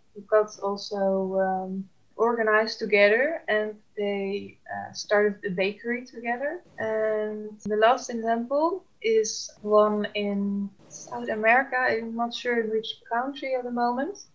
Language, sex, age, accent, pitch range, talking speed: English, female, 20-39, Dutch, 200-225 Hz, 130 wpm